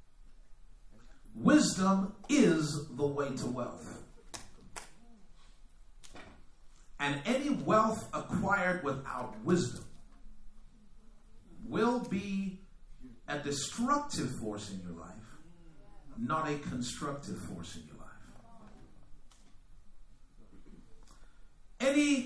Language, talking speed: English, 75 wpm